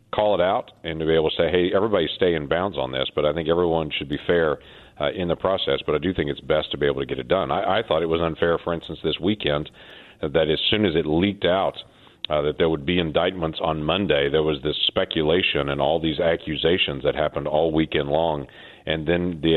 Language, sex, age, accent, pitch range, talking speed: English, male, 40-59, American, 75-90 Hz, 250 wpm